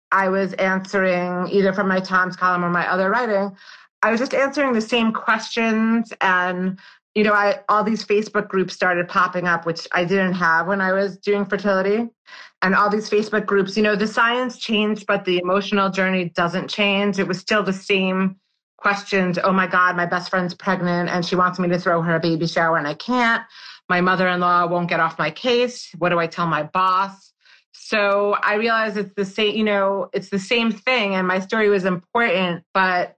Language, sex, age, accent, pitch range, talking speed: English, female, 30-49, American, 175-205 Hz, 205 wpm